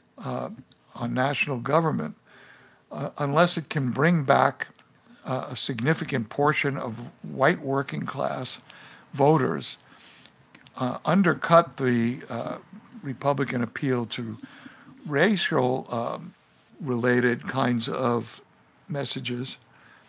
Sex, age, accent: male, 60-79, American